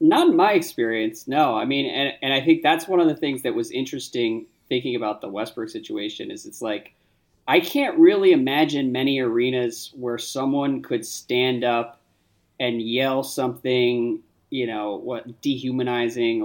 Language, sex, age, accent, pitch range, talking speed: English, male, 20-39, American, 120-195 Hz, 165 wpm